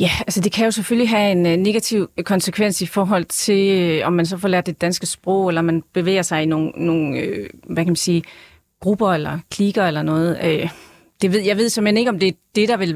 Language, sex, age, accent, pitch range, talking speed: Danish, female, 30-49, native, 170-200 Hz, 225 wpm